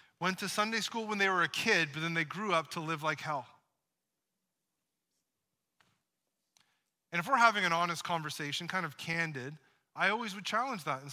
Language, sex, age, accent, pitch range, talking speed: English, male, 30-49, American, 150-195 Hz, 185 wpm